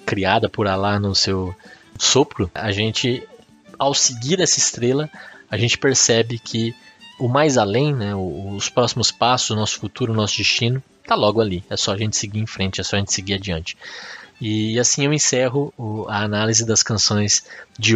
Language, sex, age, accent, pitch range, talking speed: Portuguese, male, 20-39, Brazilian, 105-130 Hz, 180 wpm